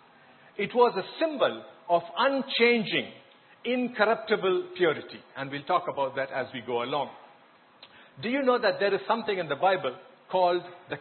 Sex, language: male, English